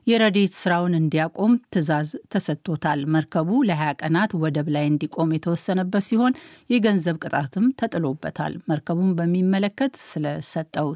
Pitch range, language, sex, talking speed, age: 160-205 Hz, Amharic, female, 105 wpm, 50-69